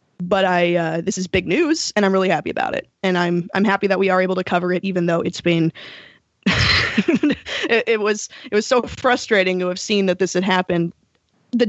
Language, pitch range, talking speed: English, 175-210 Hz, 220 wpm